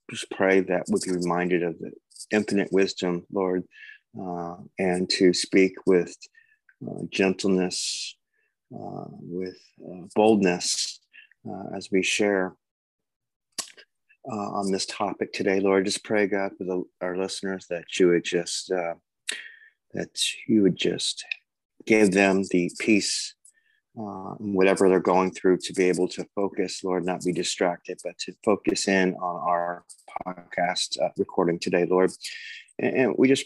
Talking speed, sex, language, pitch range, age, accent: 145 wpm, male, English, 90-100 Hz, 30-49, American